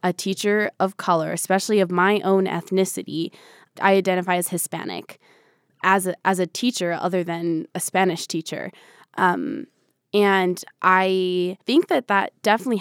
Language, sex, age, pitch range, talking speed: English, female, 20-39, 170-200 Hz, 135 wpm